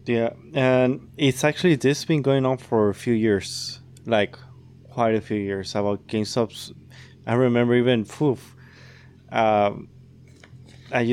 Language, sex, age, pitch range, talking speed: English, male, 20-39, 110-130 Hz, 135 wpm